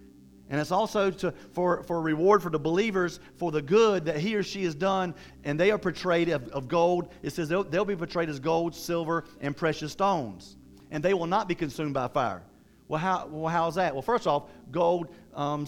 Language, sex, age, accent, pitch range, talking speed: English, male, 50-69, American, 155-195 Hz, 215 wpm